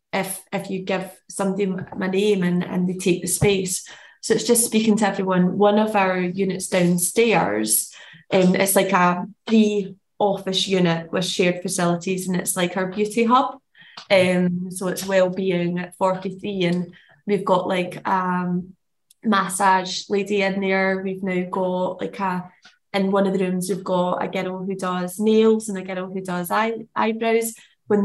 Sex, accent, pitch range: female, British, 180-205 Hz